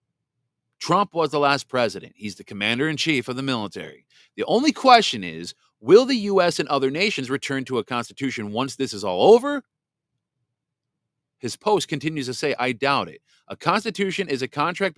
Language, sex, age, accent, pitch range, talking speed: English, male, 40-59, American, 120-155 Hz, 170 wpm